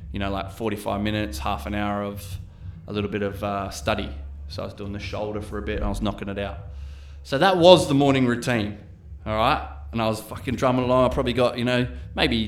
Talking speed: 240 wpm